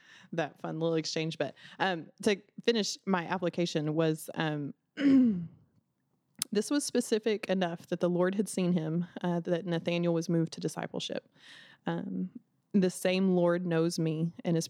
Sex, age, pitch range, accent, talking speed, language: female, 20-39, 160-185 Hz, American, 150 wpm, English